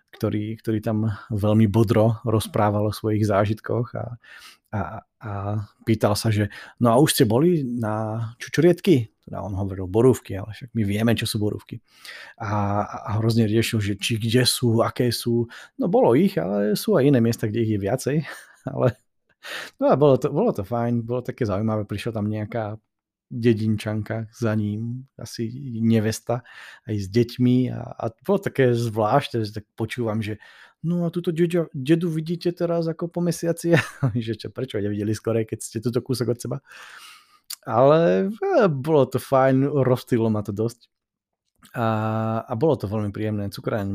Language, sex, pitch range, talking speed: Slovak, male, 105-125 Hz, 165 wpm